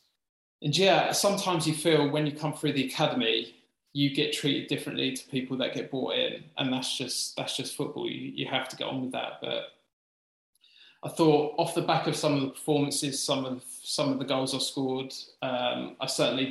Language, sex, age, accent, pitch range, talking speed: English, male, 20-39, British, 125-150 Hz, 205 wpm